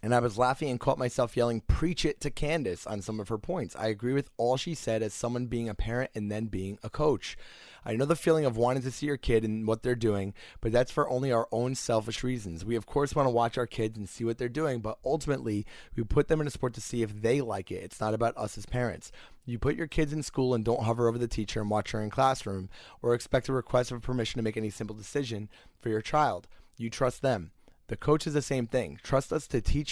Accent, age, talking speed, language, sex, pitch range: American, 20-39, 265 wpm, English, male, 110-130 Hz